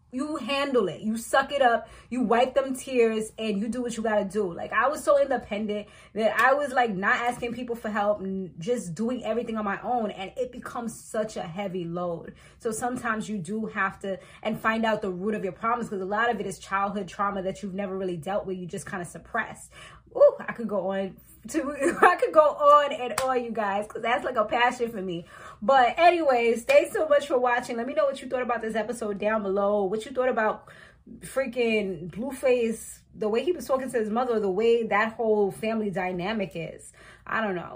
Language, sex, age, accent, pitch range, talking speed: English, female, 20-39, American, 200-245 Hz, 225 wpm